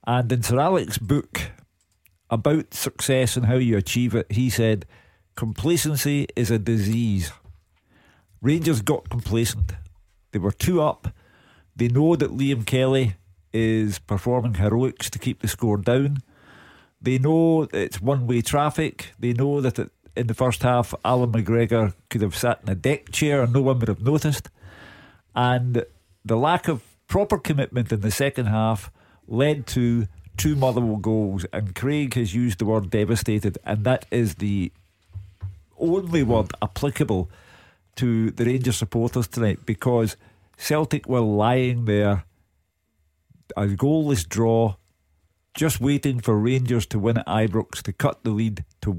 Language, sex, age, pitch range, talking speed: English, male, 50-69, 105-130 Hz, 150 wpm